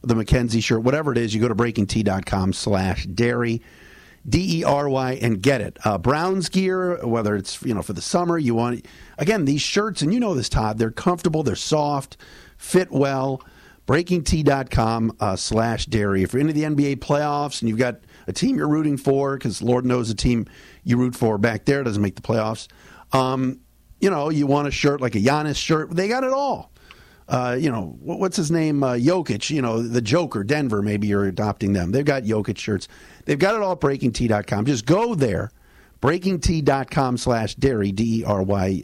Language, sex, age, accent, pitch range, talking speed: English, male, 50-69, American, 110-150 Hz, 195 wpm